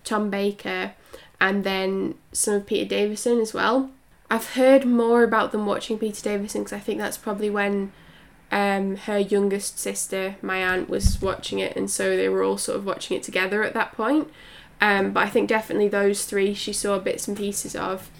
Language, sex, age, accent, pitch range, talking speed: English, female, 10-29, British, 190-230 Hz, 195 wpm